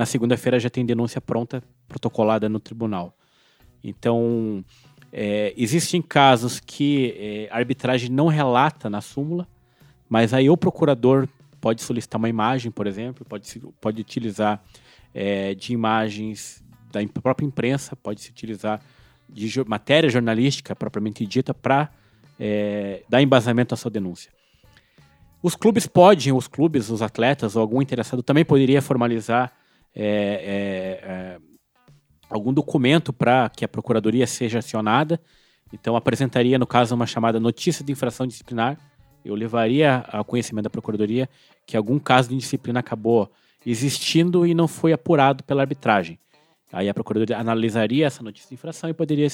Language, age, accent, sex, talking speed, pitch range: Portuguese, 20-39, Brazilian, male, 145 wpm, 110-140 Hz